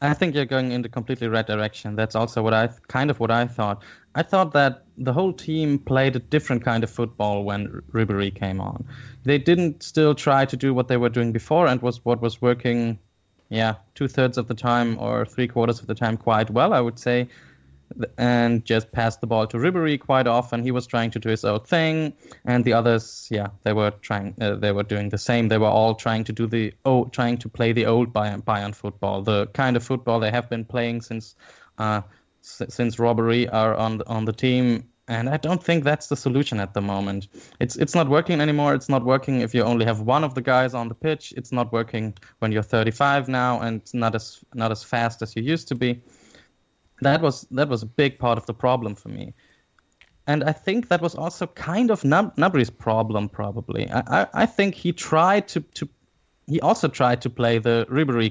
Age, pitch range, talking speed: 10-29, 110-135 Hz, 225 wpm